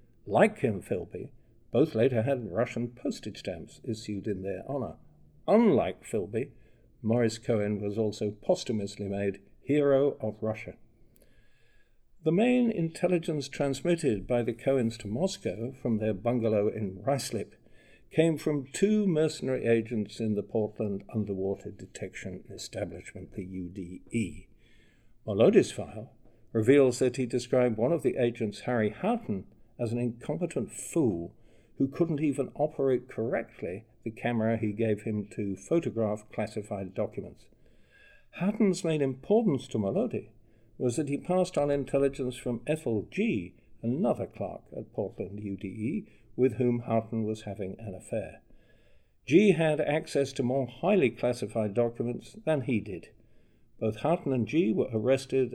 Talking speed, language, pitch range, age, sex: 135 wpm, English, 110-135 Hz, 60-79, male